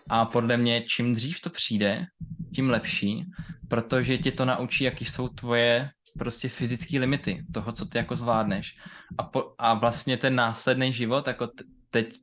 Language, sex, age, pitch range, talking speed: Czech, male, 20-39, 115-130 Hz, 160 wpm